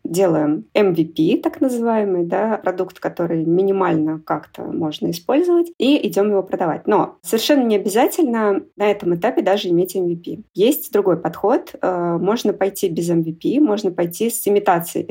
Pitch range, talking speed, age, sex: 175-230 Hz, 145 wpm, 20-39, female